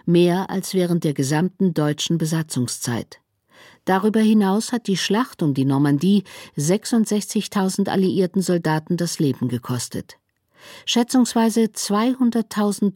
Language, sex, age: German, female, 50-69